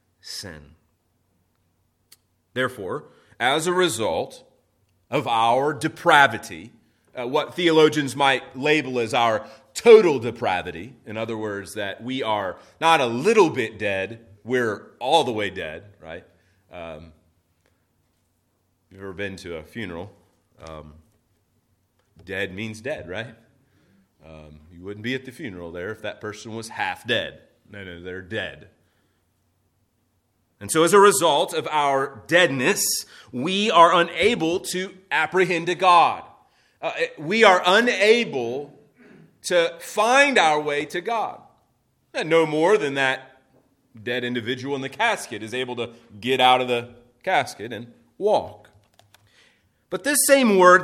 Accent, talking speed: American, 135 wpm